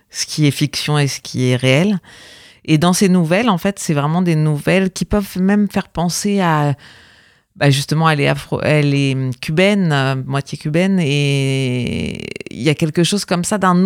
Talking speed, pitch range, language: 190 wpm, 135-165 Hz, French